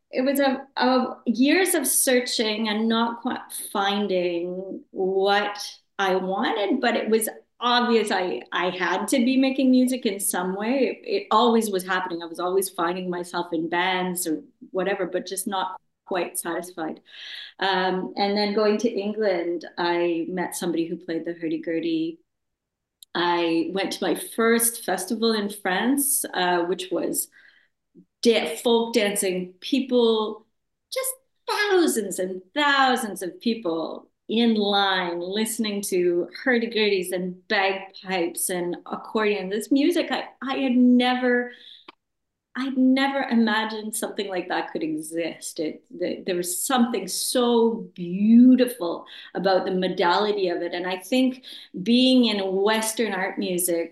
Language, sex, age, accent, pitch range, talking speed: English, female, 30-49, American, 180-245 Hz, 135 wpm